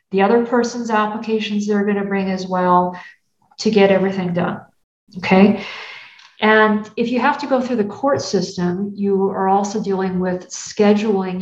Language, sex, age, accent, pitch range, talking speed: English, female, 50-69, American, 185-215 Hz, 165 wpm